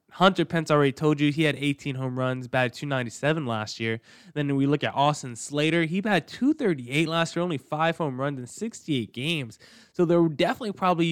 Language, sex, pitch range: English, male, 130-185 Hz